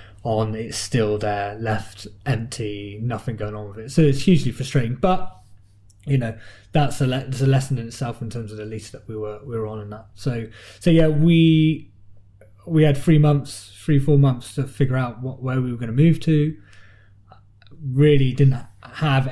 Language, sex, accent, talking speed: English, male, British, 195 wpm